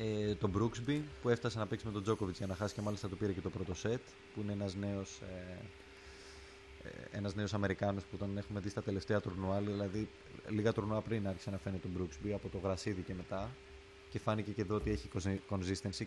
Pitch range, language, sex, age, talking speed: 95-115 Hz, Greek, male, 20-39, 205 wpm